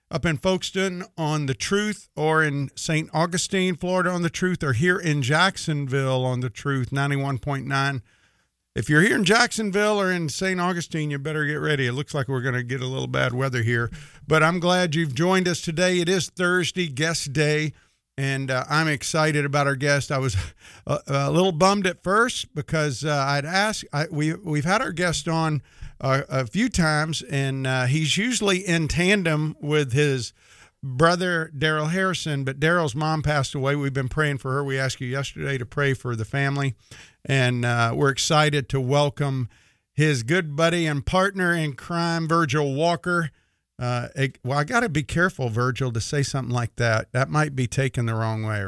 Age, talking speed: 50-69, 190 wpm